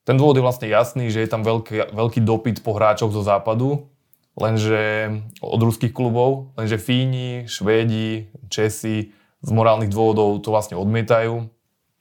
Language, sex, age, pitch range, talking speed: Slovak, male, 20-39, 105-115 Hz, 145 wpm